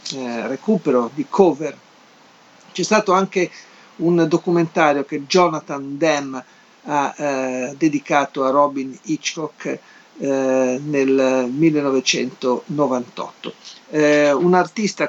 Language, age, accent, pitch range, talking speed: Italian, 50-69, native, 140-185 Hz, 90 wpm